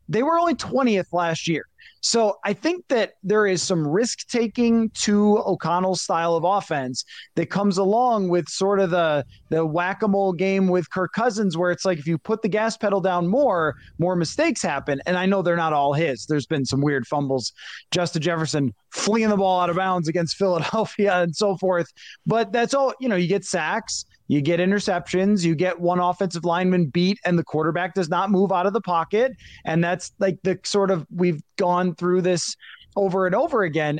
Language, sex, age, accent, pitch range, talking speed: English, male, 20-39, American, 165-200 Hz, 200 wpm